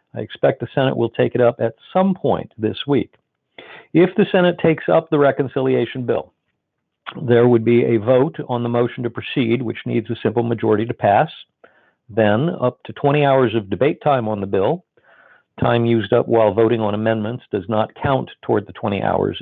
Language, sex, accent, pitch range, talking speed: English, male, American, 115-135 Hz, 195 wpm